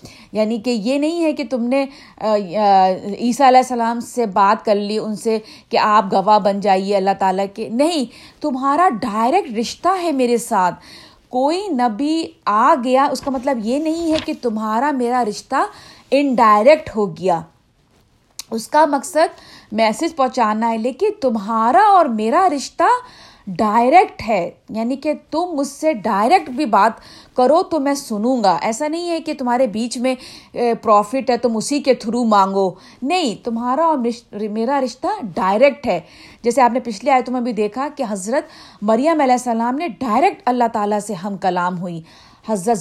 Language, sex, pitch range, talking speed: Urdu, female, 215-280 Hz, 170 wpm